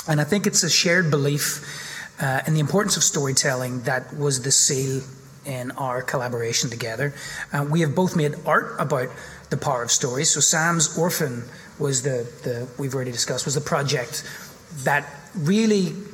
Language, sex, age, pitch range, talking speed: English, male, 30-49, 135-160 Hz, 170 wpm